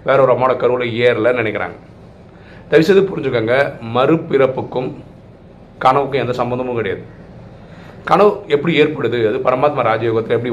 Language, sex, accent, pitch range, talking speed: Tamil, male, native, 115-155 Hz, 115 wpm